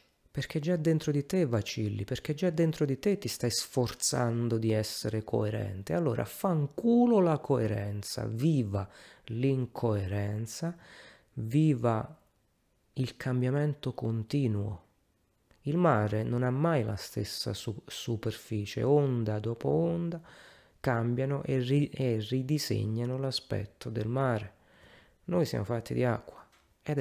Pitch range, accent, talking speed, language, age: 105-135 Hz, native, 120 wpm, Italian, 30-49